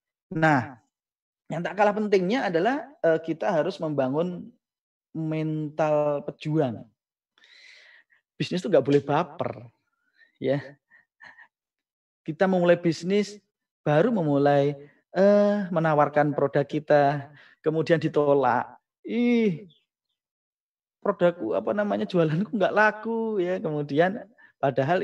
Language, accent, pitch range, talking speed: Indonesian, native, 155-220 Hz, 95 wpm